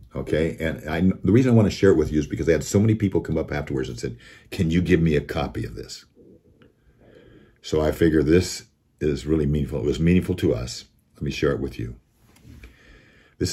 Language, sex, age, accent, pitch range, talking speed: English, male, 50-69, American, 75-95 Hz, 225 wpm